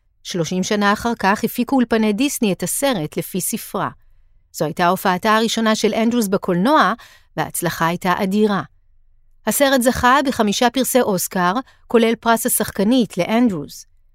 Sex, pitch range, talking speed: female, 170-245 Hz, 125 wpm